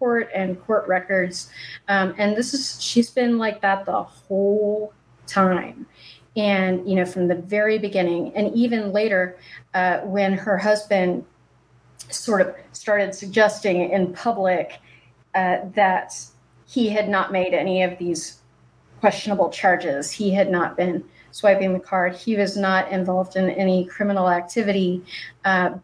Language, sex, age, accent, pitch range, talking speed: English, female, 30-49, American, 180-205 Hz, 145 wpm